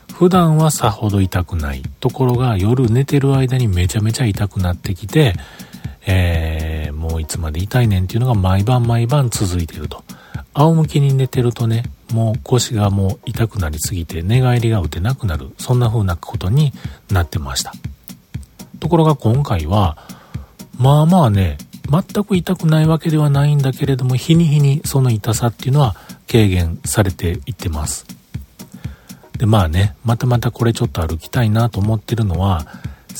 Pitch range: 95-130 Hz